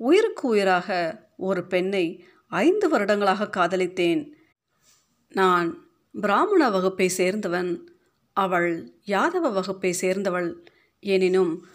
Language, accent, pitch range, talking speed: Tamil, native, 180-225 Hz, 80 wpm